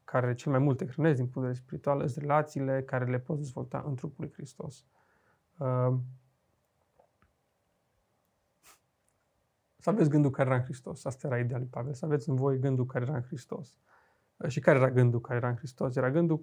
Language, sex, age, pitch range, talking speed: Romanian, male, 30-49, 130-155 Hz, 185 wpm